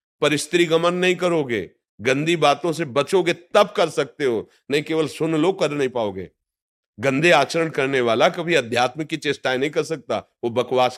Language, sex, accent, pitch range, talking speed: Hindi, male, native, 120-160 Hz, 175 wpm